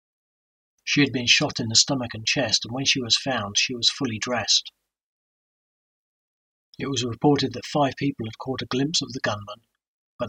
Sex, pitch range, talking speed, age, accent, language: male, 115-130 Hz, 185 wpm, 40-59, British, English